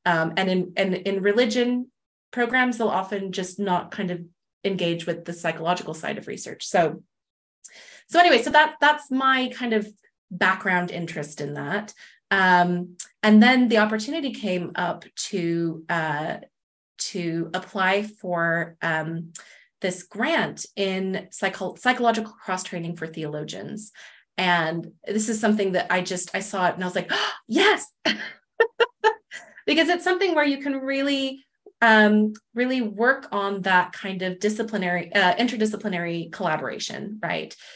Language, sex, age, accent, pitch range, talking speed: English, female, 30-49, American, 175-220 Hz, 145 wpm